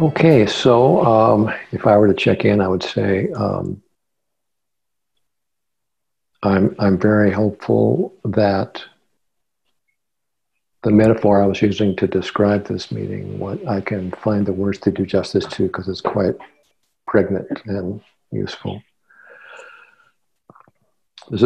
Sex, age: male, 60-79